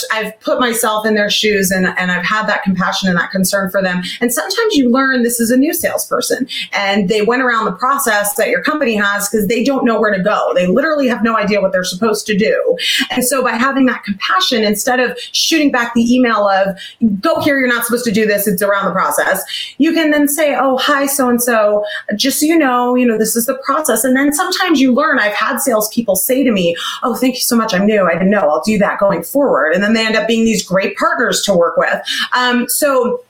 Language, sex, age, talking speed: English, female, 30-49, 245 wpm